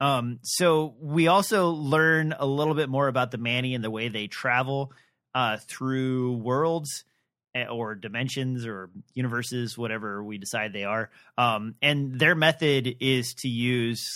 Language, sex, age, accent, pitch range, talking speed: English, male, 30-49, American, 125-150 Hz, 155 wpm